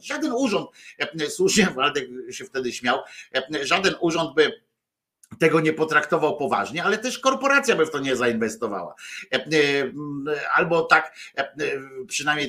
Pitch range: 125-175 Hz